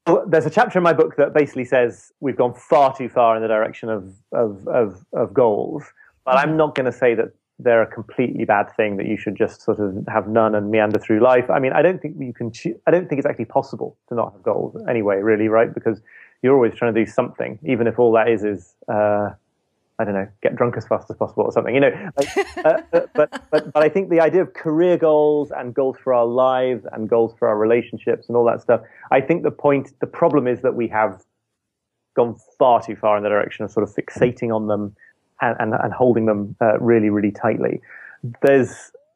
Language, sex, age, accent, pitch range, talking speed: English, male, 30-49, British, 110-145 Hz, 235 wpm